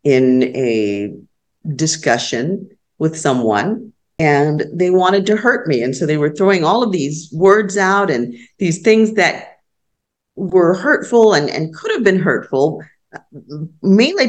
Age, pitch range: 50-69, 170-230 Hz